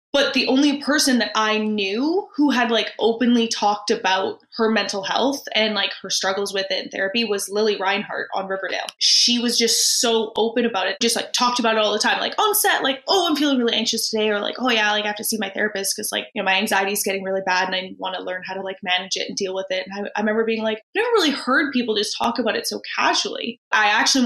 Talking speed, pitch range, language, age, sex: 265 wpm, 200-240 Hz, English, 20-39, female